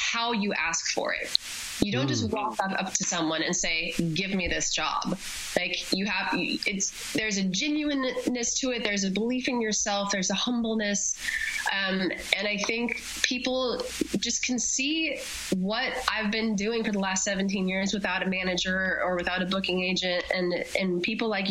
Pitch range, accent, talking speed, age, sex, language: 185-230 Hz, American, 180 wpm, 20-39, female, English